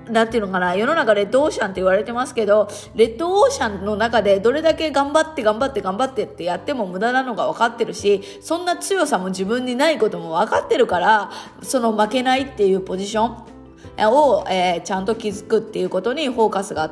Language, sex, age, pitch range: Japanese, female, 20-39, 205-280 Hz